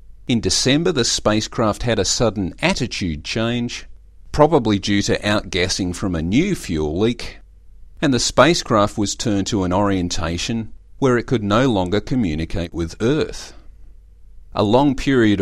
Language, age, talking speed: English, 40-59, 145 wpm